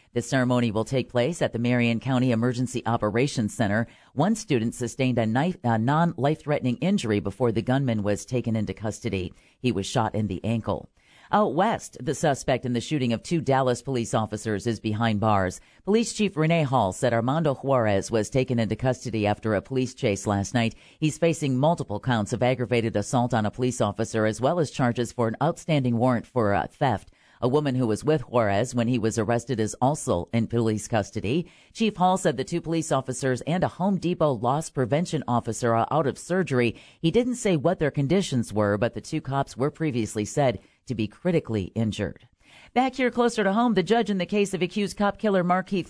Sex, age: female, 40-59